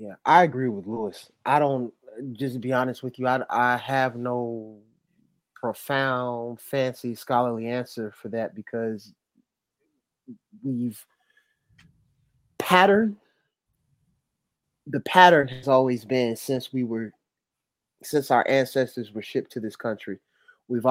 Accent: American